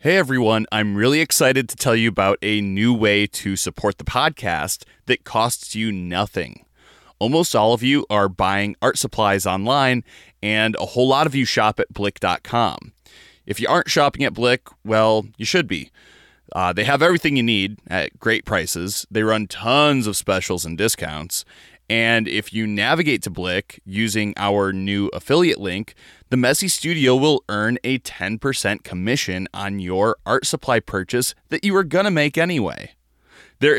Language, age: English, 20-39